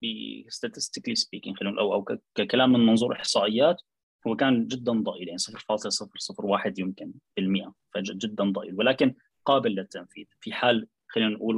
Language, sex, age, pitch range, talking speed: Arabic, male, 20-39, 105-145 Hz, 140 wpm